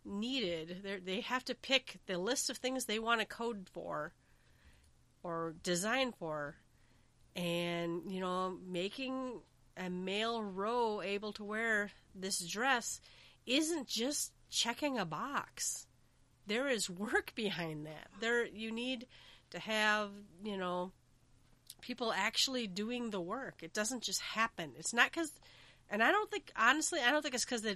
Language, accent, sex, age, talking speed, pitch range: English, American, female, 30-49, 150 wpm, 180-240 Hz